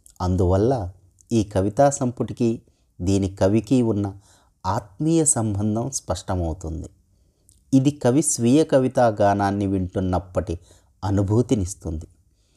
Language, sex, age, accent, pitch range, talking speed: Telugu, male, 30-49, native, 95-125 Hz, 75 wpm